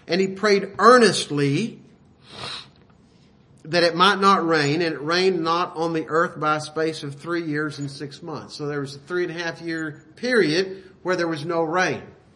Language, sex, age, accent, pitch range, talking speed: English, male, 50-69, American, 150-185 Hz, 195 wpm